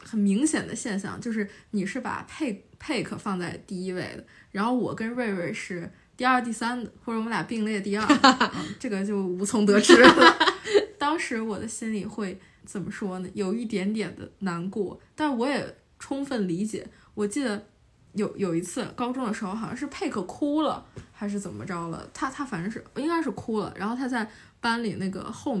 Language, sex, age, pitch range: Chinese, female, 20-39, 200-260 Hz